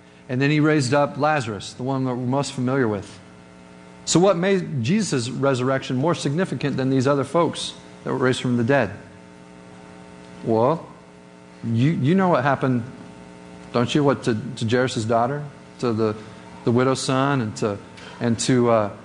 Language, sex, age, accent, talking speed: English, male, 40-59, American, 165 wpm